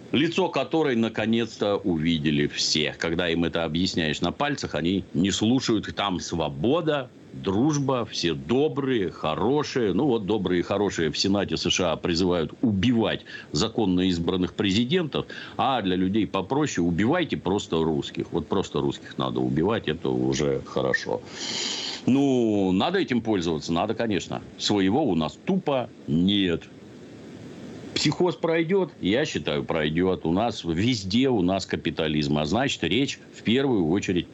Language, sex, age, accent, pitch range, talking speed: Russian, male, 60-79, native, 85-115 Hz, 135 wpm